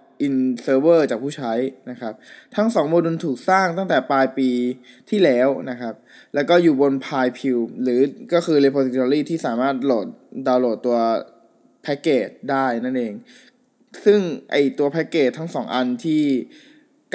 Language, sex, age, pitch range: Thai, male, 20-39, 125-155 Hz